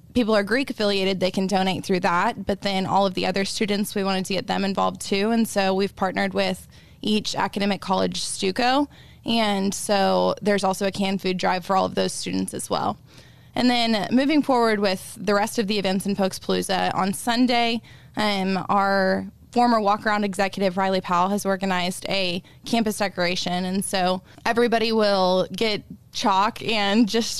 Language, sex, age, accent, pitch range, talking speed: English, female, 20-39, American, 190-220 Hz, 175 wpm